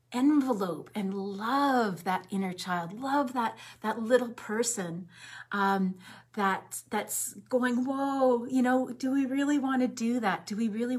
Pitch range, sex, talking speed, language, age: 175-230 Hz, female, 155 wpm, English, 40-59